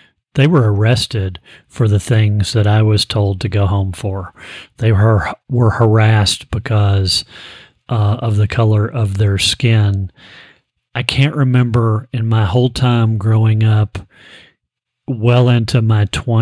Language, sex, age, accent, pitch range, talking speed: English, male, 40-59, American, 105-120 Hz, 140 wpm